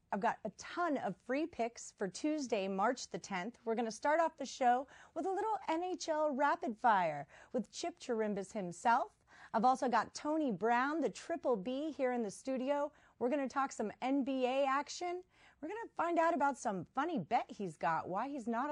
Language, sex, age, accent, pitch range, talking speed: English, female, 40-59, American, 205-280 Hz, 200 wpm